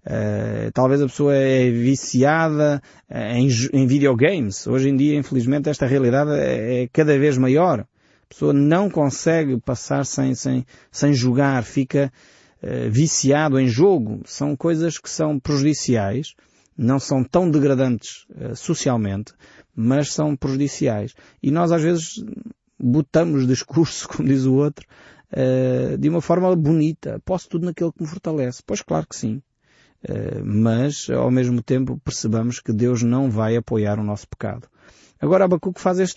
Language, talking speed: Portuguese, 150 wpm